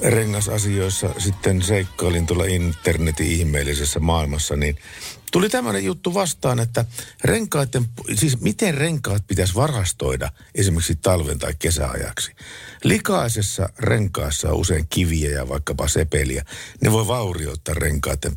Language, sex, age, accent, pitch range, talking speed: Finnish, male, 50-69, native, 75-110 Hz, 115 wpm